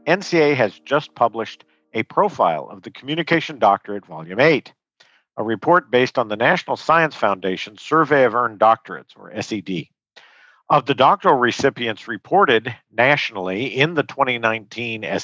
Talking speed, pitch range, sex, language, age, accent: 140 wpm, 110-150 Hz, male, English, 50-69, American